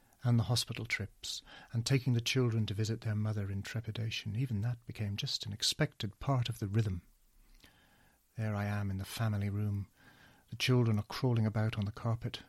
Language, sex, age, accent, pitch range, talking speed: English, male, 40-59, British, 105-125 Hz, 190 wpm